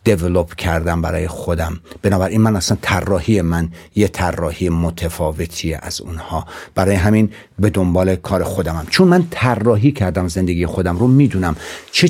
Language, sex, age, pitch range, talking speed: Persian, male, 60-79, 90-120 Hz, 145 wpm